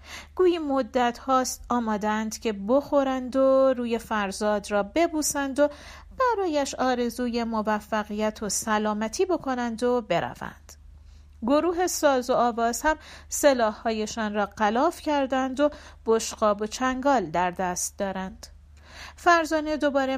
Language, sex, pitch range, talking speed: Persian, female, 215-275 Hz, 115 wpm